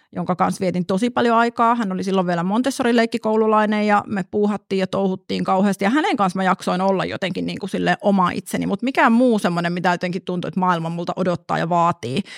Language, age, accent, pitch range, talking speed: Finnish, 30-49, native, 175-205 Hz, 200 wpm